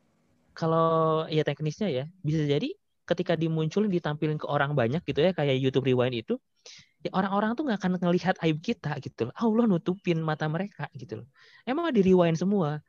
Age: 20-39